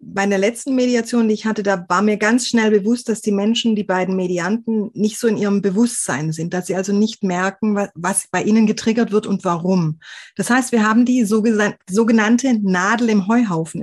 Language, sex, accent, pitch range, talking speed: German, female, German, 195-245 Hz, 200 wpm